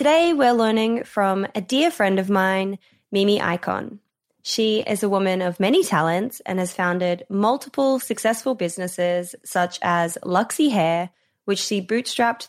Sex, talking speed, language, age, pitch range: female, 150 wpm, English, 20-39, 180-245 Hz